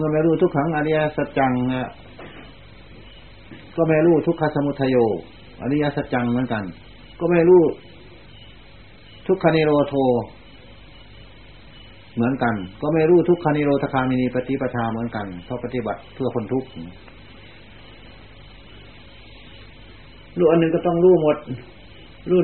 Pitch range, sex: 110-135 Hz, male